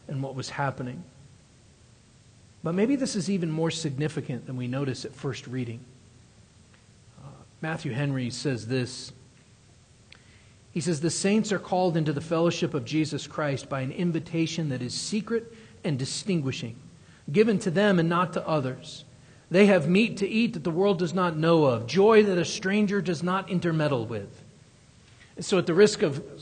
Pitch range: 135-195 Hz